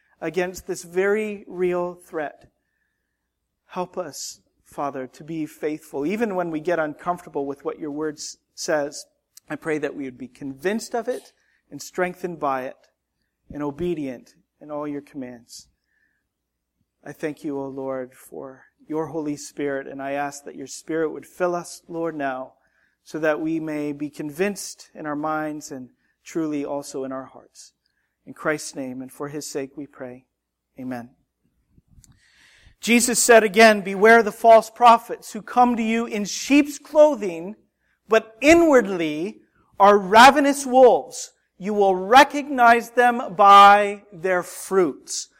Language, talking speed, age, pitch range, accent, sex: English, 145 wpm, 40-59, 150-225 Hz, American, male